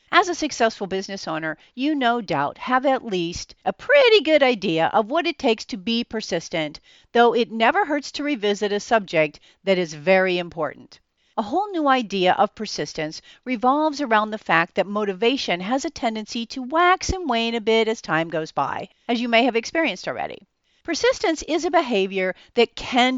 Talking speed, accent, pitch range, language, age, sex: 185 wpm, American, 195-275 Hz, English, 50-69, female